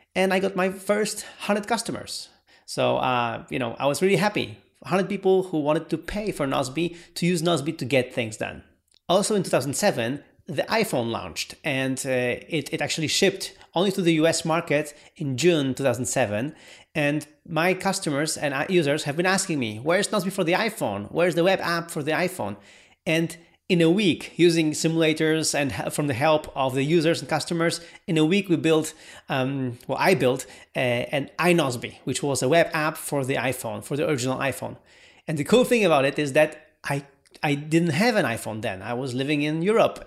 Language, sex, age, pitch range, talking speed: English, male, 30-49, 135-175 Hz, 195 wpm